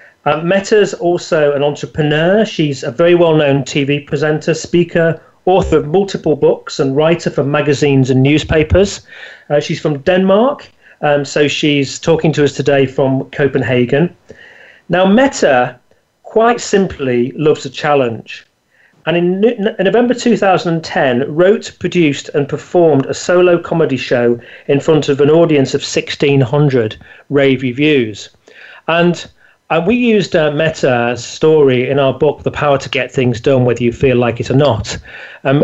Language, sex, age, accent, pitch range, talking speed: English, male, 40-59, British, 140-175 Hz, 150 wpm